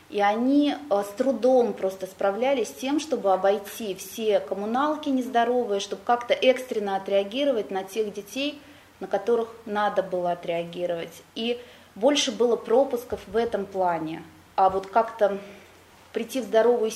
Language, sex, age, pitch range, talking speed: Russian, female, 20-39, 190-255 Hz, 135 wpm